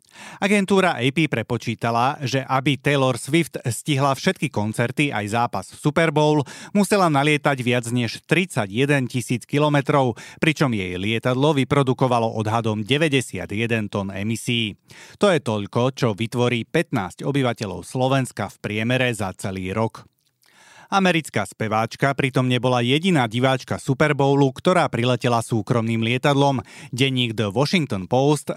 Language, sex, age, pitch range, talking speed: Slovak, male, 30-49, 115-145 Hz, 120 wpm